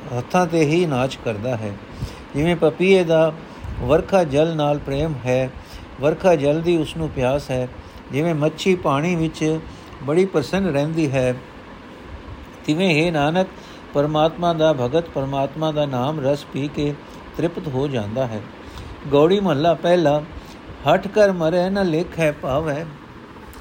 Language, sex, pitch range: Punjabi, male, 145-180 Hz